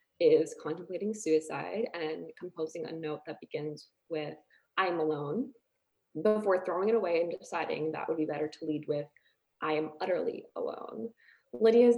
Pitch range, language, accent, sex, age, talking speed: 155-260 Hz, English, American, female, 20-39, 155 wpm